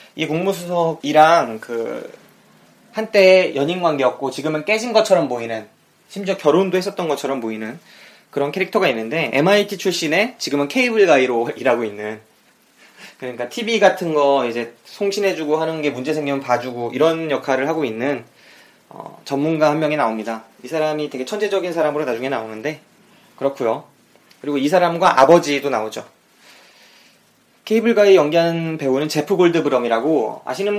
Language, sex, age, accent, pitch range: Korean, male, 20-39, native, 130-190 Hz